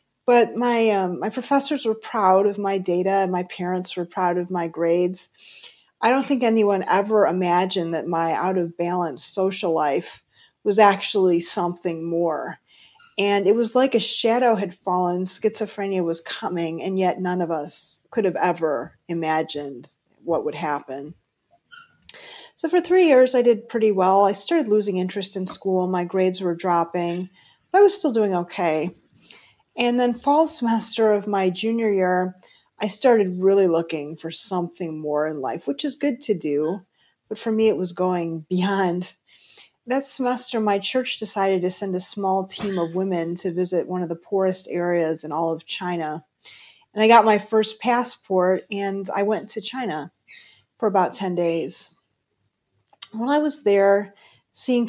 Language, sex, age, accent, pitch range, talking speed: English, female, 40-59, American, 175-220 Hz, 165 wpm